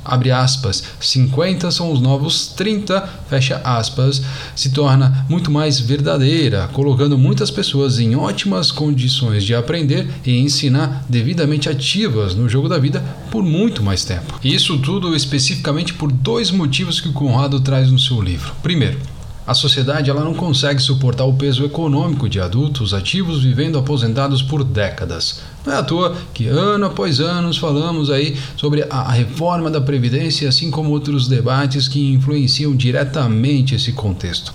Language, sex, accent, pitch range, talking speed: Portuguese, male, Brazilian, 130-155 Hz, 150 wpm